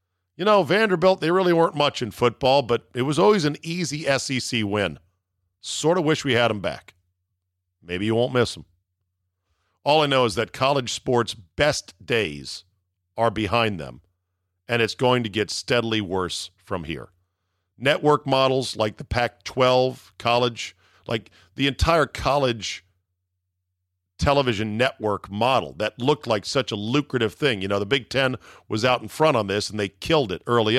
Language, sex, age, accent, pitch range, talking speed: English, male, 50-69, American, 90-135 Hz, 170 wpm